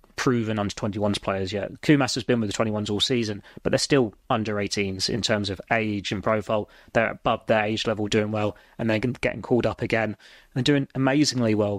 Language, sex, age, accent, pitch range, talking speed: English, male, 20-39, British, 110-120 Hz, 205 wpm